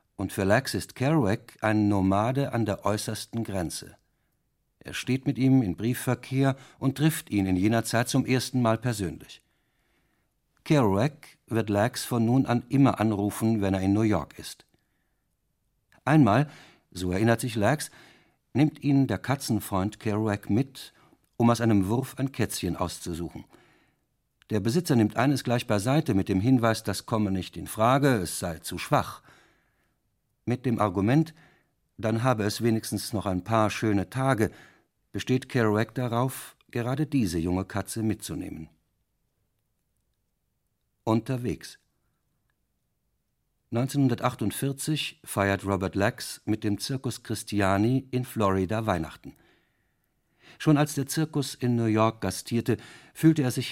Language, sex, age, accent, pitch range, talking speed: German, male, 60-79, German, 100-130 Hz, 135 wpm